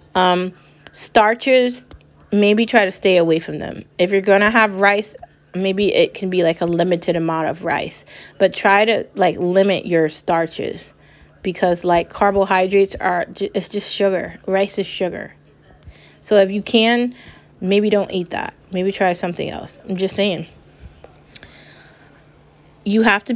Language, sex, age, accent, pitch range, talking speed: English, female, 20-39, American, 175-200 Hz, 150 wpm